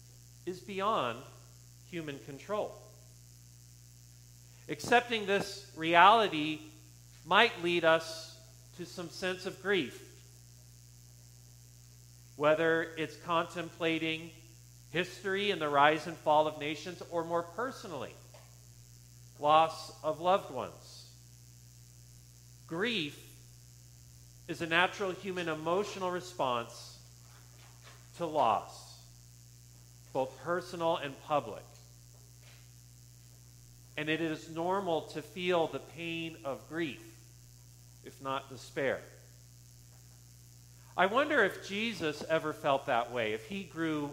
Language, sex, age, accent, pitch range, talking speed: English, male, 40-59, American, 120-170 Hz, 95 wpm